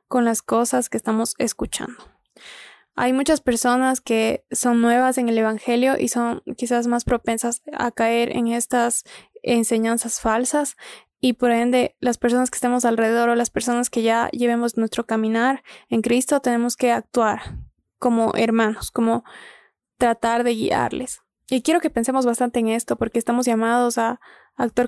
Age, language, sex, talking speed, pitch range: 20-39, Spanish, female, 155 wpm, 230-250 Hz